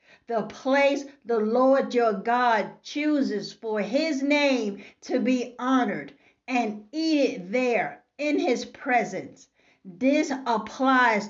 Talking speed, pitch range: 115 wpm, 230-275 Hz